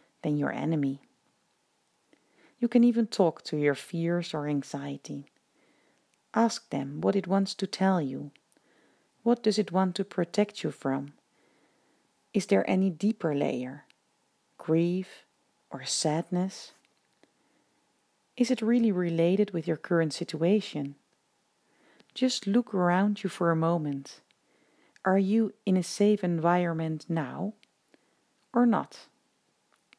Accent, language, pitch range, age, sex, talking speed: Dutch, English, 160-210 Hz, 40-59, female, 120 wpm